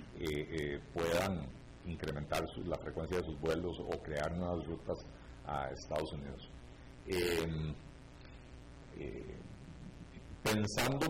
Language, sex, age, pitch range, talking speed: Spanish, male, 50-69, 80-110 Hz, 110 wpm